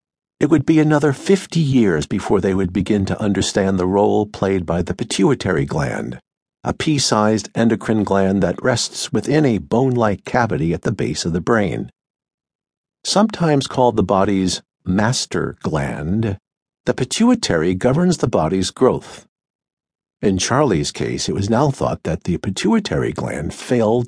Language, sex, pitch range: English, male, 100-130 Hz